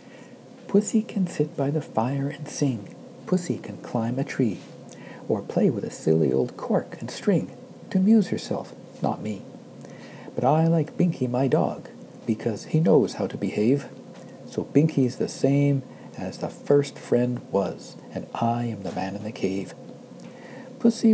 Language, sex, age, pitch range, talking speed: English, male, 60-79, 120-170 Hz, 160 wpm